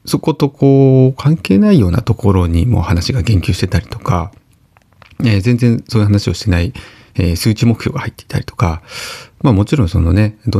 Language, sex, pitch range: Japanese, male, 100-130 Hz